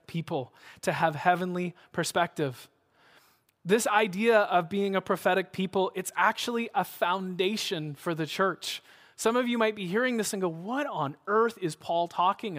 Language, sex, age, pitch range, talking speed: English, male, 20-39, 165-220 Hz, 160 wpm